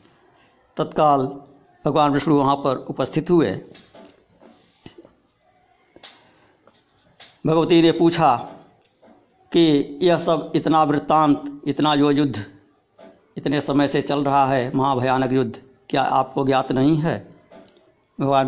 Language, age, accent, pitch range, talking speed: Hindi, 60-79, native, 130-155 Hz, 105 wpm